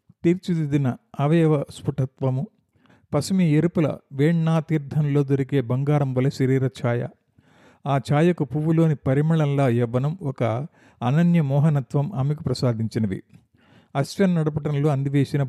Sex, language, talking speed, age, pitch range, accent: male, Telugu, 95 wpm, 50-69, 130-155 Hz, native